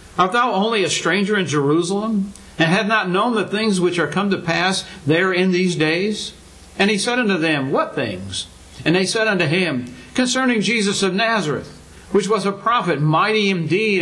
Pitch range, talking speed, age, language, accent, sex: 160-210 Hz, 195 wpm, 60-79, English, American, male